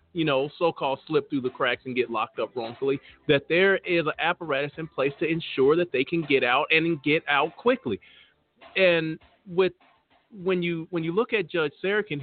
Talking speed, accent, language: 195 wpm, American, English